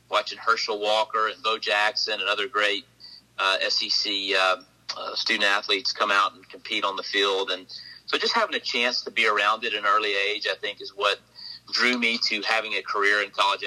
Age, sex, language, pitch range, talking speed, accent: 30-49, male, English, 105-125 Hz, 210 wpm, American